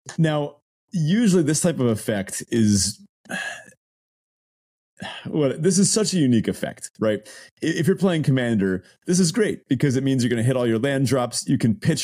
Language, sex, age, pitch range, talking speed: English, male, 30-49, 105-145 Hz, 180 wpm